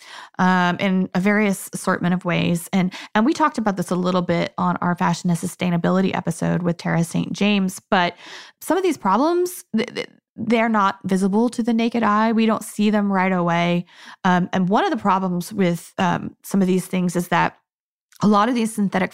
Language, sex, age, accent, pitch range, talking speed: English, female, 20-39, American, 180-220 Hz, 200 wpm